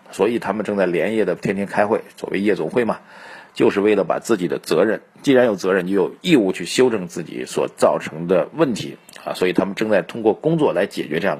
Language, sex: Chinese, male